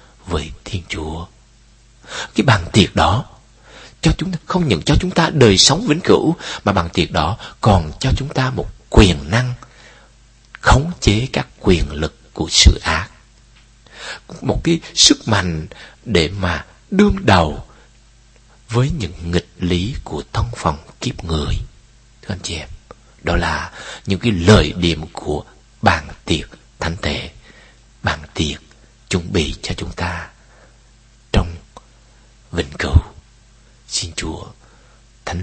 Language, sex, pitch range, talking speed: Vietnamese, male, 85-120 Hz, 140 wpm